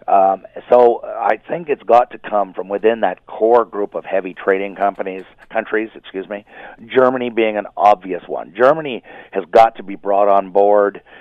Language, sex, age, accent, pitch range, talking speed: English, male, 50-69, American, 100-115 Hz, 175 wpm